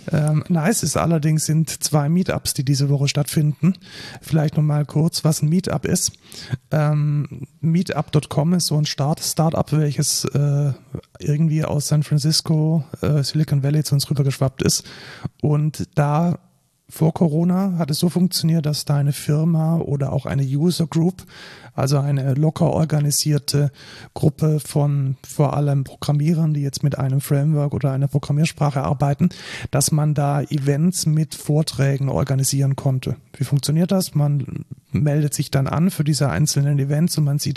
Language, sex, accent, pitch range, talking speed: German, male, German, 140-160 Hz, 155 wpm